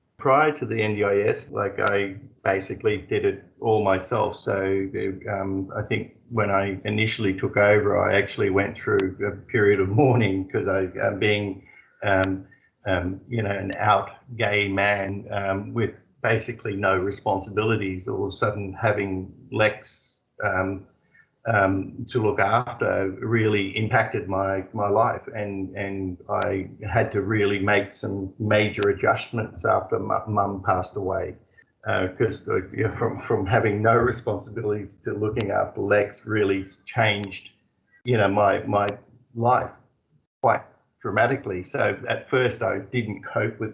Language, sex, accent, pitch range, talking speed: English, male, Australian, 95-110 Hz, 140 wpm